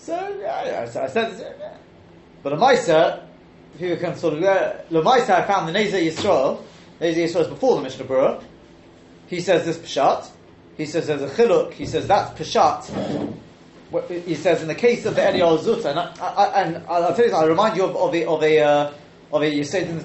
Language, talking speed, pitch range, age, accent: English, 205 wpm, 150-215 Hz, 30-49, British